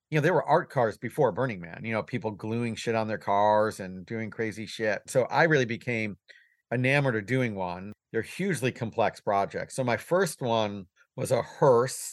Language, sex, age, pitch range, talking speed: English, male, 40-59, 105-120 Hz, 200 wpm